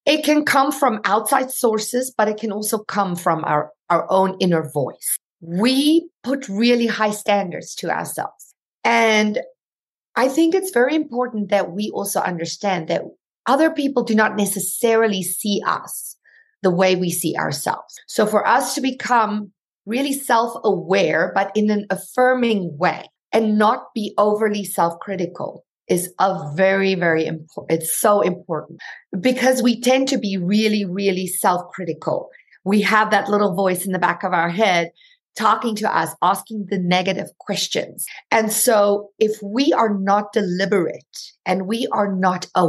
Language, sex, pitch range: English, female, 180-230 Hz